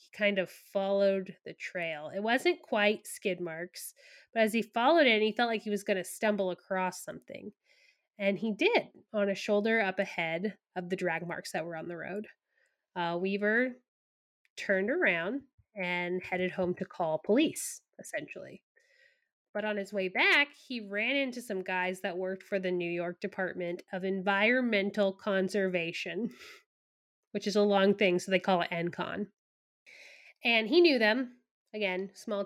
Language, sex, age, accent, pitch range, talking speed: English, female, 20-39, American, 185-220 Hz, 165 wpm